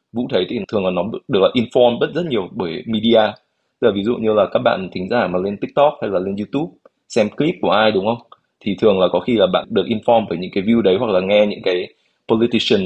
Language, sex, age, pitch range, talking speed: Vietnamese, male, 20-39, 95-115 Hz, 265 wpm